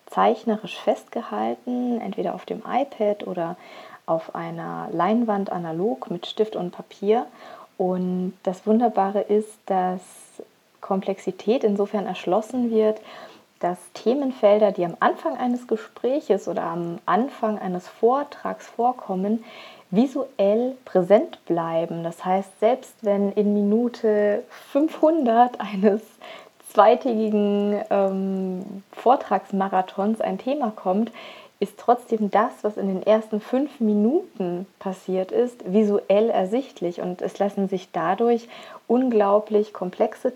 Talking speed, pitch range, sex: 110 wpm, 190-235 Hz, female